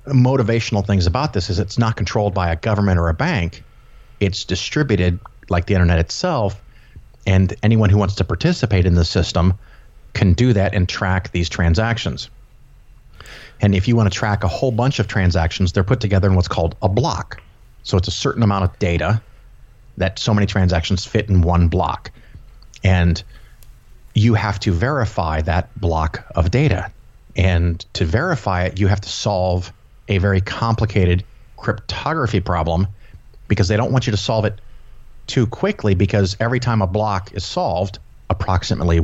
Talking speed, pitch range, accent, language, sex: 170 wpm, 90-110 Hz, American, English, male